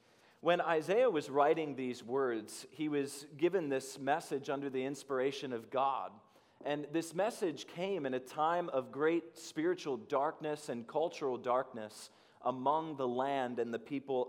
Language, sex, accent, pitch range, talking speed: English, male, American, 130-160 Hz, 150 wpm